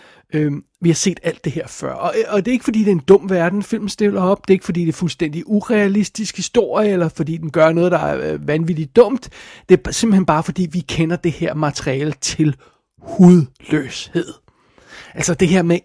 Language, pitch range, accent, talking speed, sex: Danish, 160-190 Hz, native, 210 wpm, male